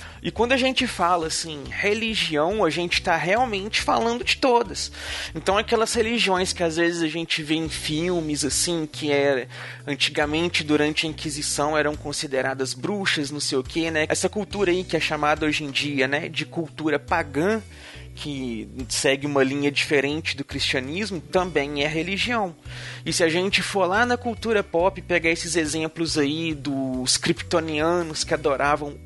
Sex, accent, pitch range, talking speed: male, Brazilian, 135-170 Hz, 165 wpm